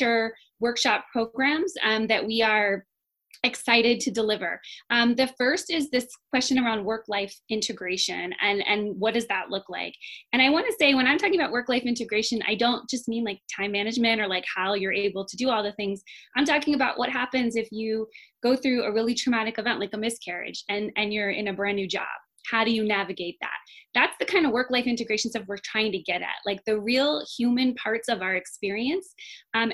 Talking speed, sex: 210 wpm, female